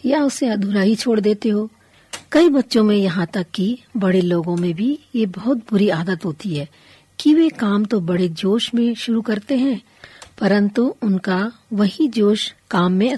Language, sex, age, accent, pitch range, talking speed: Hindi, female, 40-59, native, 180-235 Hz, 180 wpm